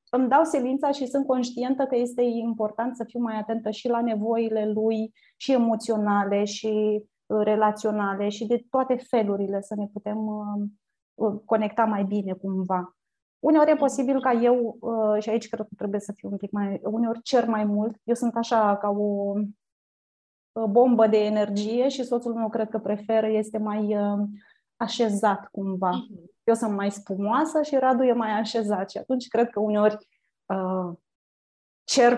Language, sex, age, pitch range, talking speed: Romanian, female, 20-39, 205-245 Hz, 160 wpm